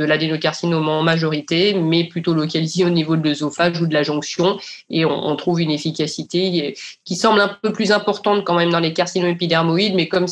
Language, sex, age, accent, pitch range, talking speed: French, female, 20-39, French, 160-185 Hz, 200 wpm